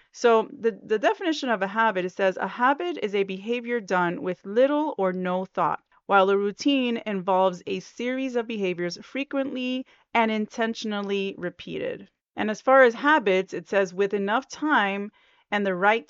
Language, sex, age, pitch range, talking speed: English, female, 30-49, 195-275 Hz, 170 wpm